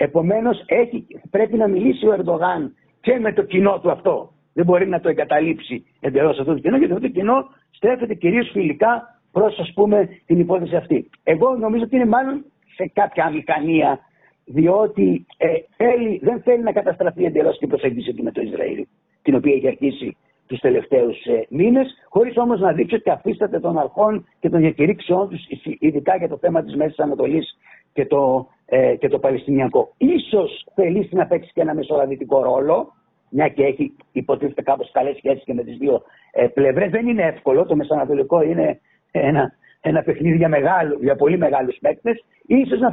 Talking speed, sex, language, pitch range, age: 170 wpm, male, Greek, 165-235 Hz, 60-79